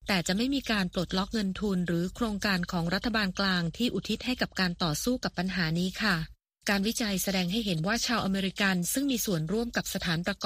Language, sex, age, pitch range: Thai, female, 20-39, 180-225 Hz